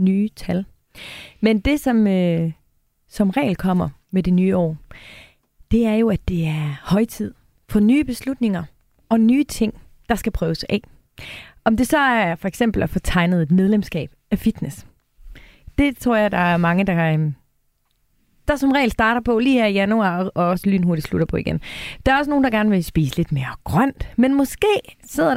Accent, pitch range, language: native, 180-235 Hz, Danish